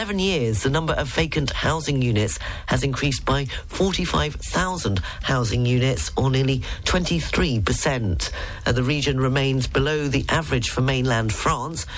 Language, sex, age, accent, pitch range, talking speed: English, female, 40-59, British, 115-155 Hz, 140 wpm